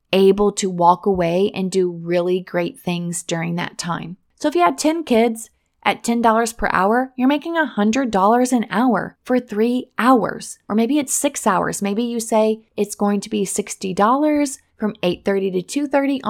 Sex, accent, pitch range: female, American, 195-250 Hz